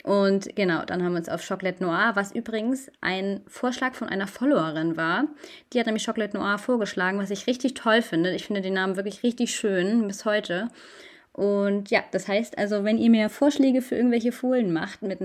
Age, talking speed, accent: 20-39, 200 wpm, German